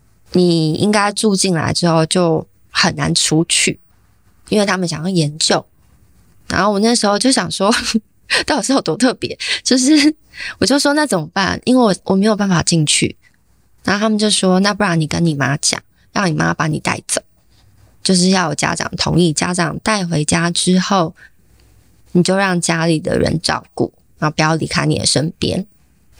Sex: female